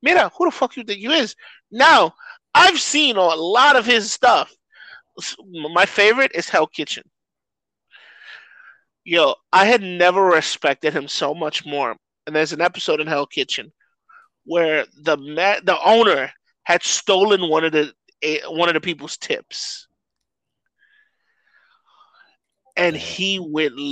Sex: male